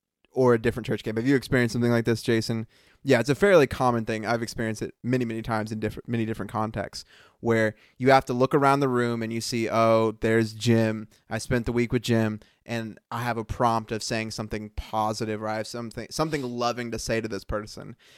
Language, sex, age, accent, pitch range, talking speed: English, male, 20-39, American, 110-135 Hz, 230 wpm